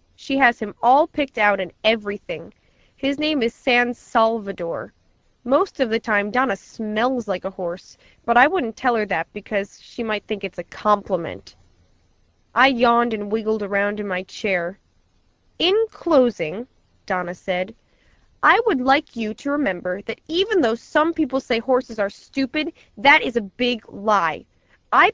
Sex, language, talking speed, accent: female, English, 160 wpm, American